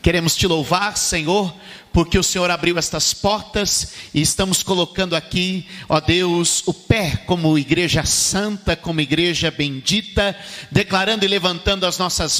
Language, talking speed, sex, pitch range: Portuguese, 140 wpm, male, 155-195 Hz